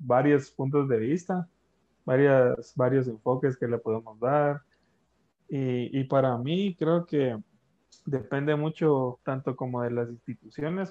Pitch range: 120-145 Hz